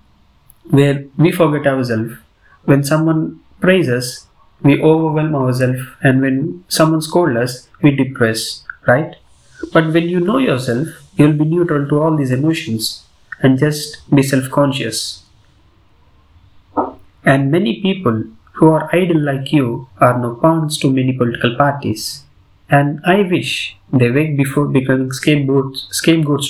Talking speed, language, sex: 135 wpm, English, male